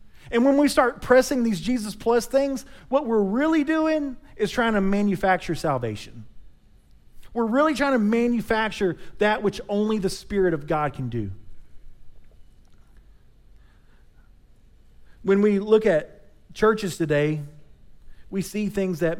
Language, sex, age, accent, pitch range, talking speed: English, male, 40-59, American, 155-225 Hz, 130 wpm